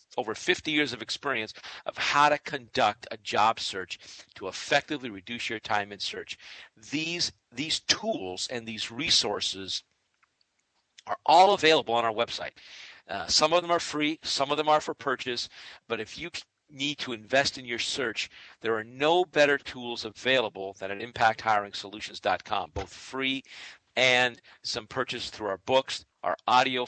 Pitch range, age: 110-140 Hz, 50-69